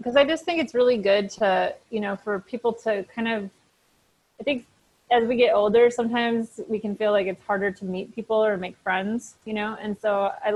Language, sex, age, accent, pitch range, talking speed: English, female, 30-49, American, 195-225 Hz, 220 wpm